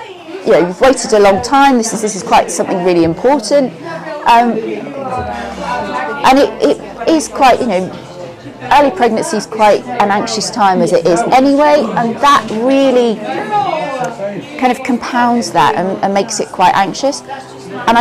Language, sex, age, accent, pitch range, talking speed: English, female, 30-49, British, 185-255 Hz, 160 wpm